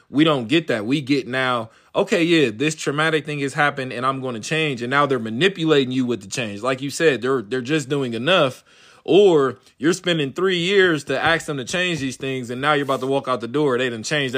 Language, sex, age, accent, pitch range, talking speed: English, male, 20-39, American, 120-155 Hz, 245 wpm